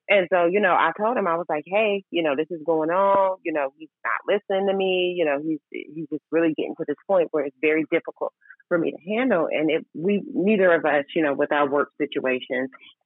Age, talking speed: 30-49, 250 wpm